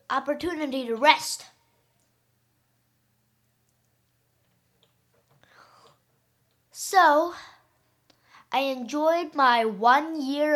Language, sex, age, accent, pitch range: English, female, 10-29, American, 220-320 Hz